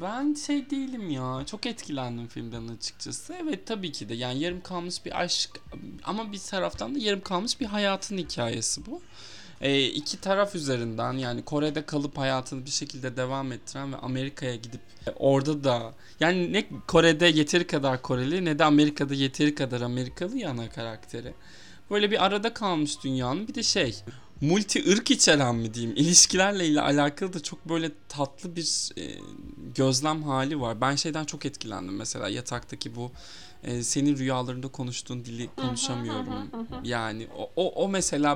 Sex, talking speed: male, 160 wpm